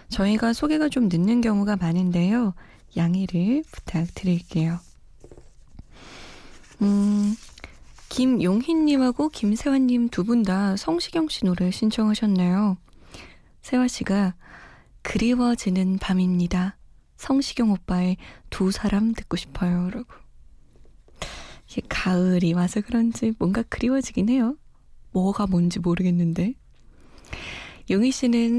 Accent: native